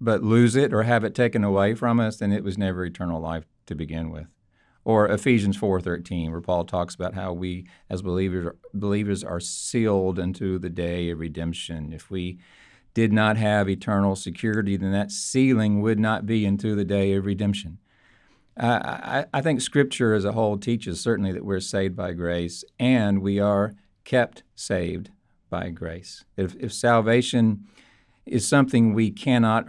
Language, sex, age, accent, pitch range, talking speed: English, male, 50-69, American, 95-110 Hz, 170 wpm